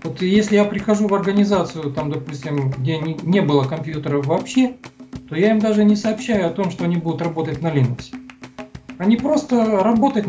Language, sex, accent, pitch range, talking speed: Russian, male, native, 155-220 Hz, 175 wpm